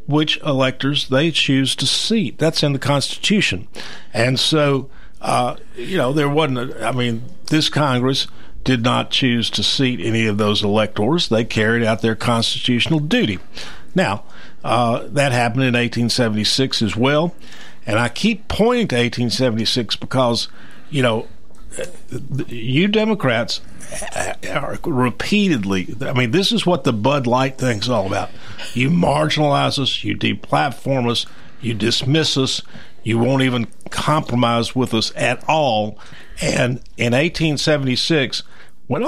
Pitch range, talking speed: 115-145 Hz, 140 wpm